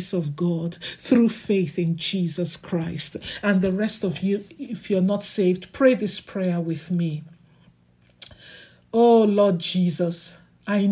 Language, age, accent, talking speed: English, 50-69, Nigerian, 135 wpm